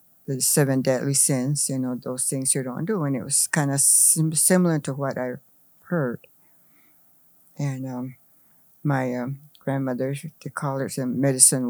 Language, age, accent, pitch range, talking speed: English, 60-79, American, 135-150 Hz, 165 wpm